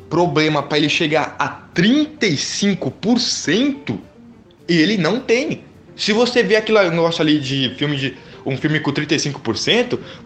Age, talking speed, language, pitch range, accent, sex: 20-39, 135 wpm, Portuguese, 135-215 Hz, Brazilian, male